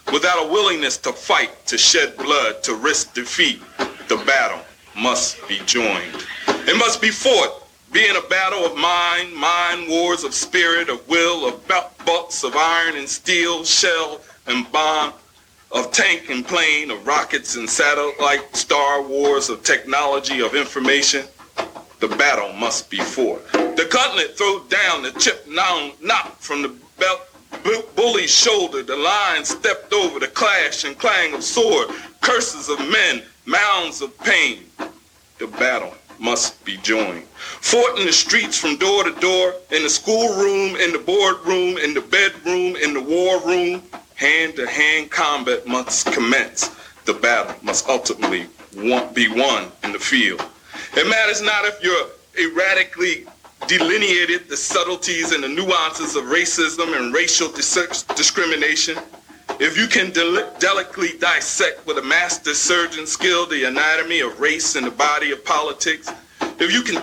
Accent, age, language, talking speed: American, 40-59, English, 155 wpm